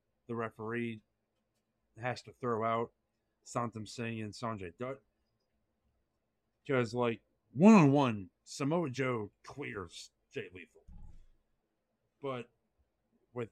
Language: English